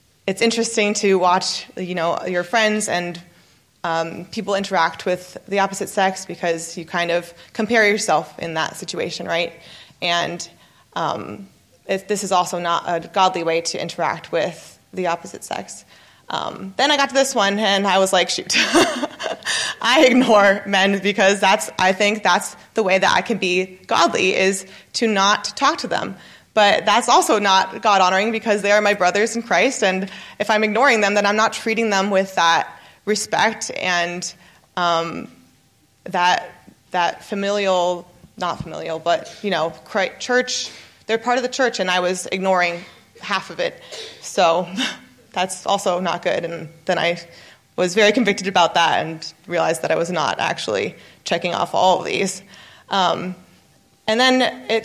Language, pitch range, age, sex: English, 175-215 Hz, 20-39, female